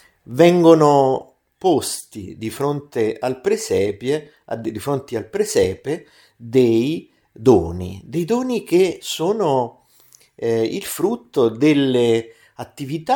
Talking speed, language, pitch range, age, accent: 100 wpm, Italian, 110-130 Hz, 50-69, native